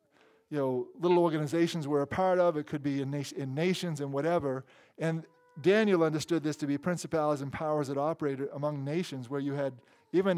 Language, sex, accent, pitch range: English, male, American, 130-170 Hz